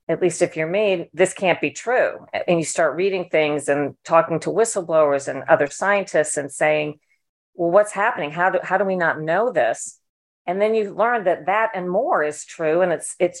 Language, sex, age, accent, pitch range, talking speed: English, female, 40-59, American, 155-185 Hz, 210 wpm